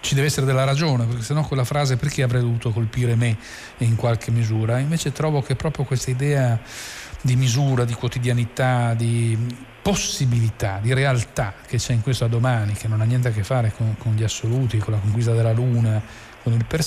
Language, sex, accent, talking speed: Italian, male, native, 205 wpm